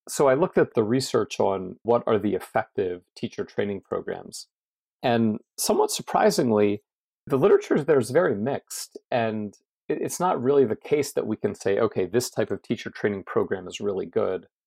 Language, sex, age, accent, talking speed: English, male, 40-59, American, 175 wpm